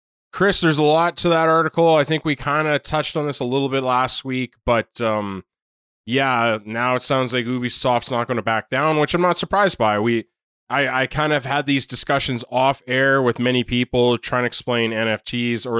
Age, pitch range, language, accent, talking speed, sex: 20-39, 115-135 Hz, English, American, 215 wpm, male